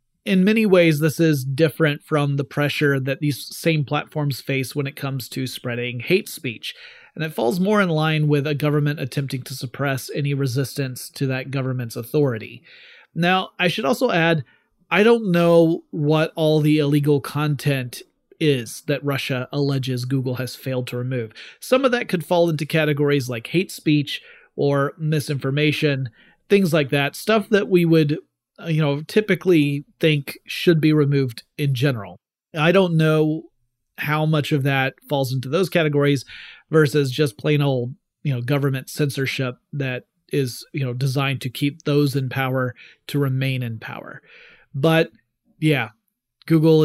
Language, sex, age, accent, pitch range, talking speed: English, male, 30-49, American, 130-160 Hz, 160 wpm